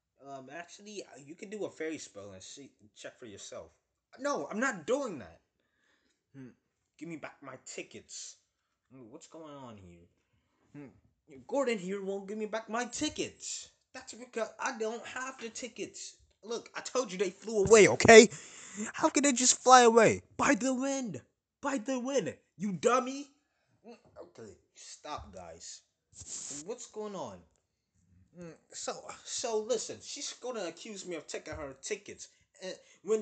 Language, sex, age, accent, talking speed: English, male, 20-39, American, 155 wpm